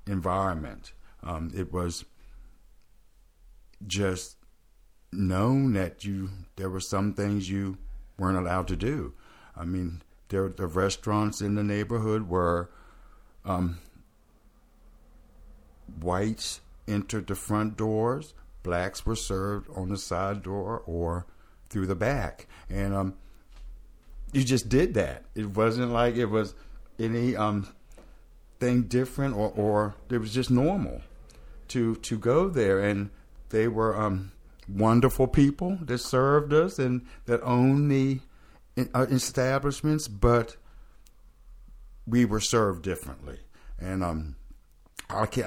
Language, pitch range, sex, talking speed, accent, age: English, 90-115 Hz, male, 120 wpm, American, 60-79